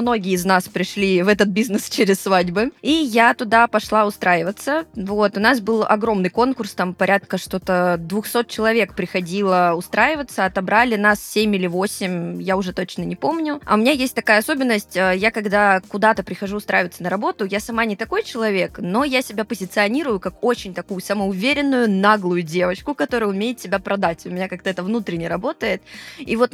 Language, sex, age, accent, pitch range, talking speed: Russian, female, 20-39, native, 190-230 Hz, 175 wpm